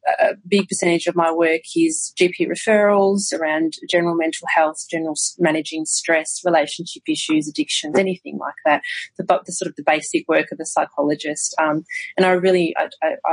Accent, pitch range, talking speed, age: Australian, 155-195 Hz, 175 wpm, 30-49